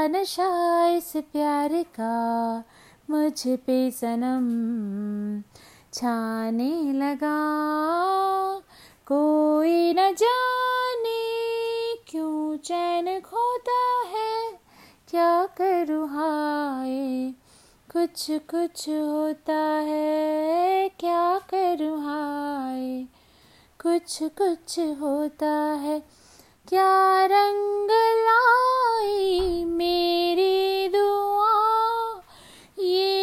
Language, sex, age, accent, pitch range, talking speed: Hindi, female, 30-49, native, 295-390 Hz, 65 wpm